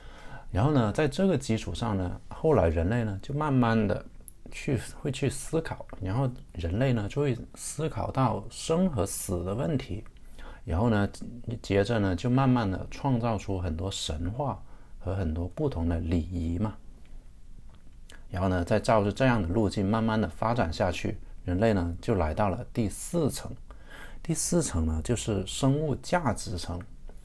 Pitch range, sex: 90-125 Hz, male